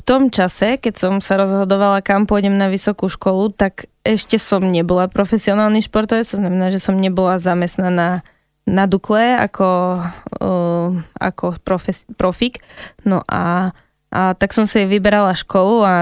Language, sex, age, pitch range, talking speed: Slovak, female, 10-29, 180-200 Hz, 150 wpm